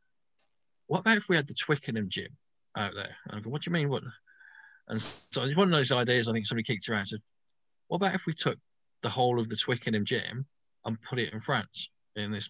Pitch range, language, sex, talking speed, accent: 105-130 Hz, English, male, 235 wpm, British